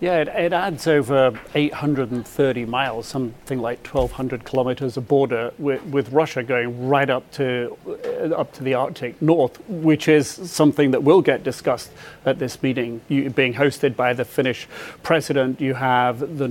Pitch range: 135-165 Hz